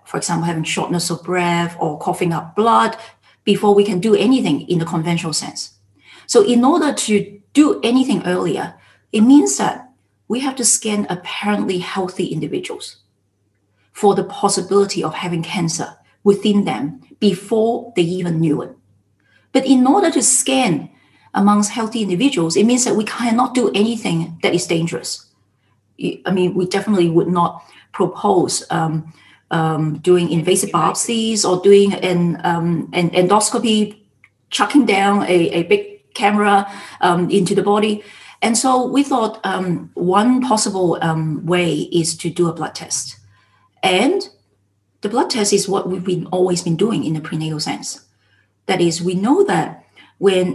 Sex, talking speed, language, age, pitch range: female, 155 wpm, English, 40-59, 170-215 Hz